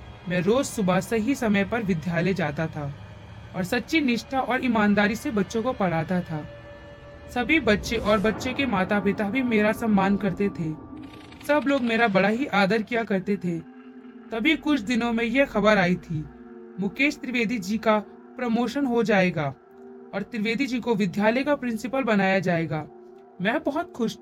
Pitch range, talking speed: 180-265 Hz, 120 wpm